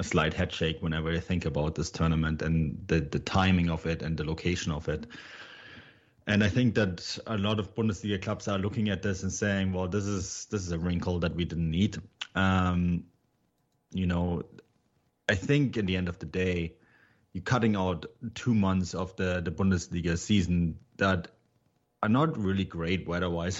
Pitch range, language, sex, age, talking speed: 85-95 Hz, English, male, 30-49, 190 wpm